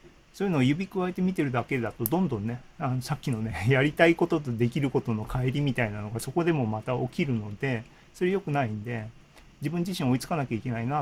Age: 40-59